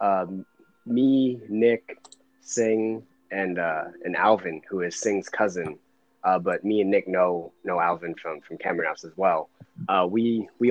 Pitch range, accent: 100-130 Hz, American